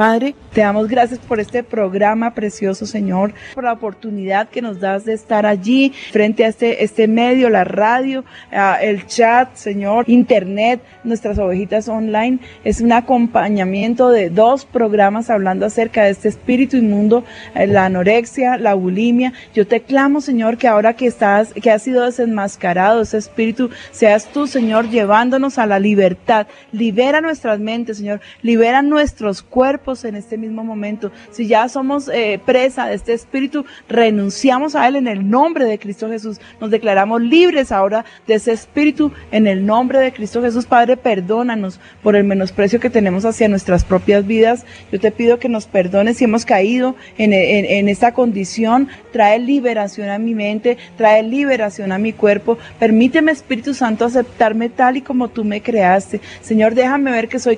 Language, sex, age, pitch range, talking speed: Spanish, female, 30-49, 210-245 Hz, 170 wpm